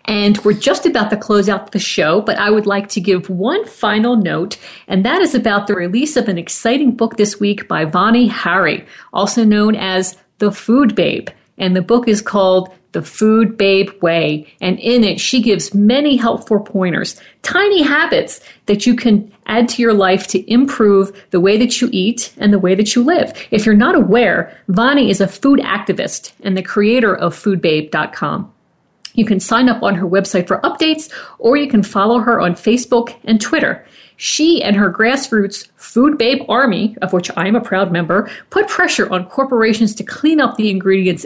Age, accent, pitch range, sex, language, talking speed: 50-69, American, 190-235 Hz, female, English, 195 wpm